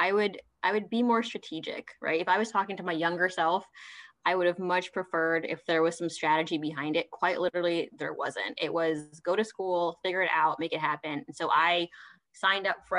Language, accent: English, American